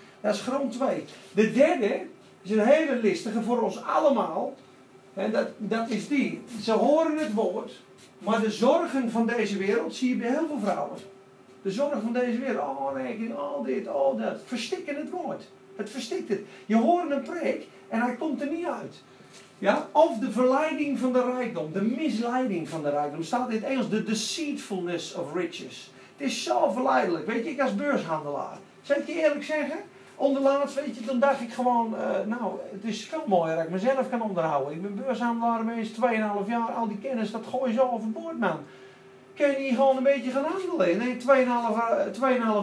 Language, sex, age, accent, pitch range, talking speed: Dutch, male, 40-59, Dutch, 210-275 Hz, 195 wpm